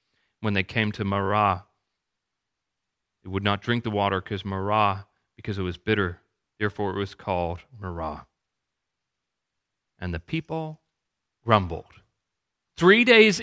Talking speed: 125 wpm